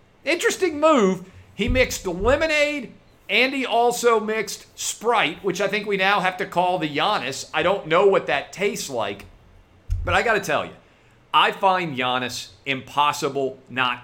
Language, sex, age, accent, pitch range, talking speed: English, male, 40-59, American, 130-180 Hz, 165 wpm